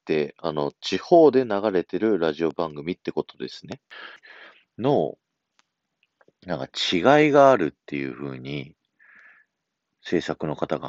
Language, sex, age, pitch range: Japanese, male, 40-59, 75-95 Hz